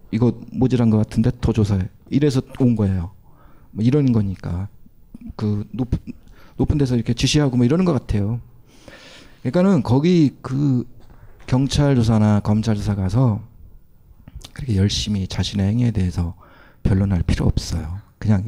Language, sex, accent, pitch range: Korean, male, native, 100-130 Hz